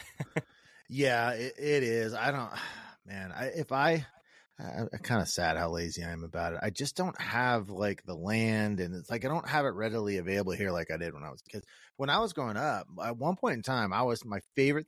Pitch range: 95-135 Hz